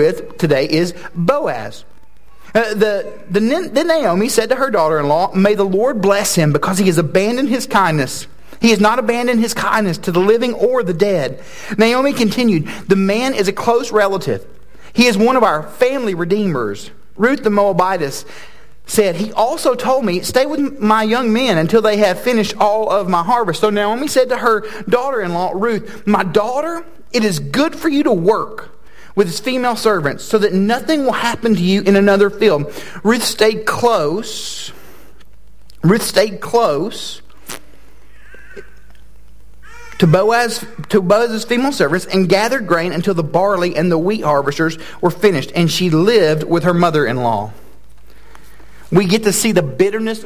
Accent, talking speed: American, 165 wpm